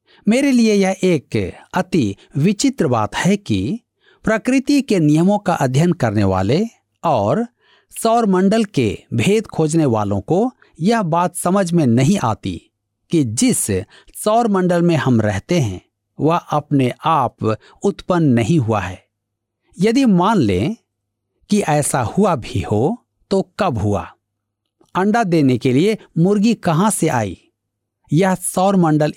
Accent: native